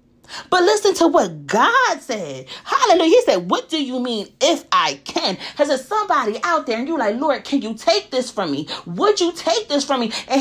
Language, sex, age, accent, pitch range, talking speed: English, female, 30-49, American, 255-380 Hz, 220 wpm